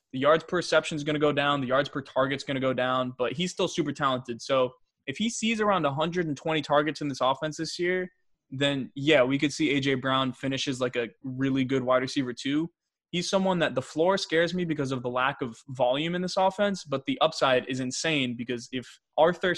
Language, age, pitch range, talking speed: English, 20-39, 130-170 Hz, 225 wpm